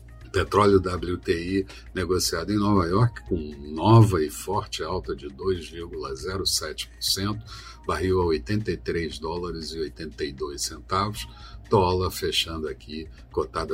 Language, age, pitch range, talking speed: Portuguese, 60-79, 85-115 Hz, 105 wpm